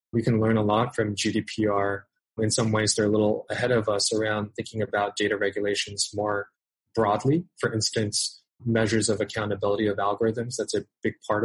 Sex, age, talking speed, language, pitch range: male, 20-39, 180 wpm, English, 105-120 Hz